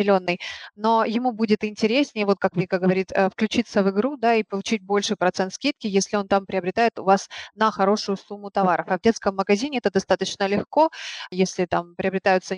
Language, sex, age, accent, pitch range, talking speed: Ukrainian, female, 20-39, native, 190-220 Hz, 175 wpm